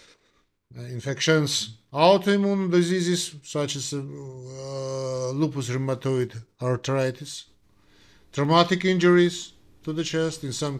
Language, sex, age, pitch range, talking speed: English, male, 50-69, 125-160 Hz, 90 wpm